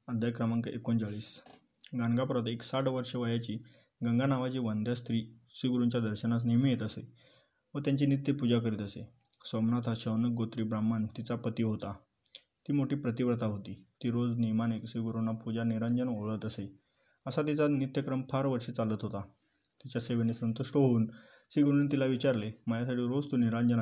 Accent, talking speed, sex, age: native, 145 wpm, male, 20-39